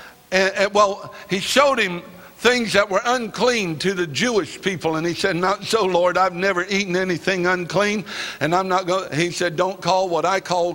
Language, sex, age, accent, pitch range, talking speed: English, male, 60-79, American, 180-225 Hz, 200 wpm